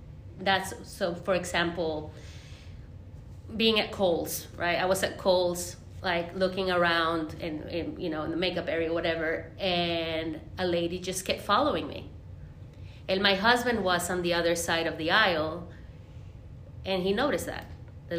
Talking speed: 160 wpm